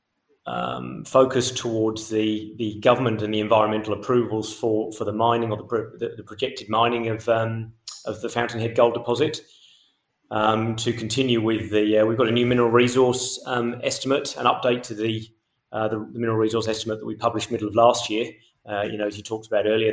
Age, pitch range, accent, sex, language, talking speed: 30-49, 105-115 Hz, British, male, English, 200 wpm